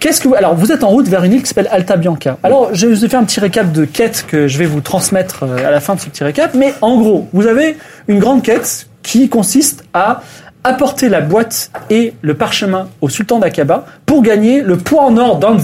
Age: 30-49